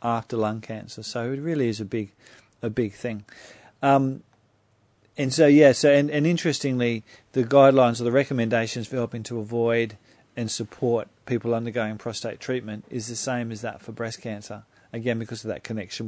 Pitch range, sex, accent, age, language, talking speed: 110-125 Hz, male, Australian, 40-59, English, 180 wpm